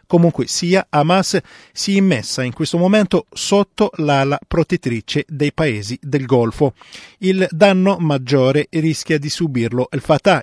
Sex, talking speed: male, 140 wpm